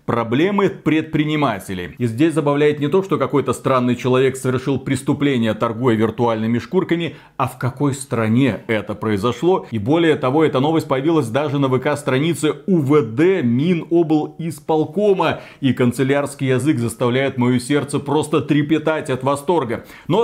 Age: 30-49